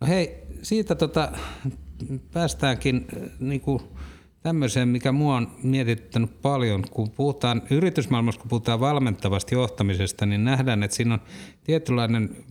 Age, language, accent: 60-79, Finnish, native